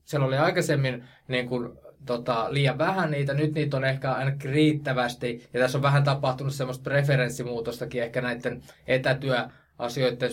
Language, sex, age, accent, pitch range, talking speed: Finnish, male, 20-39, native, 125-150 Hz, 145 wpm